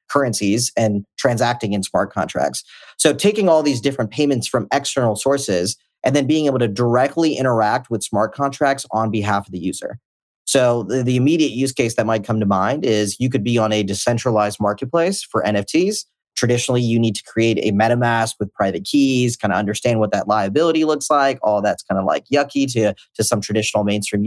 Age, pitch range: 30-49, 110-140 Hz